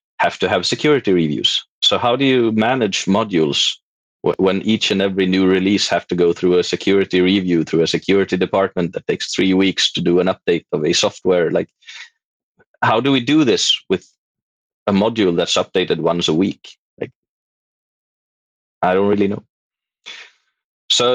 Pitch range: 90-120 Hz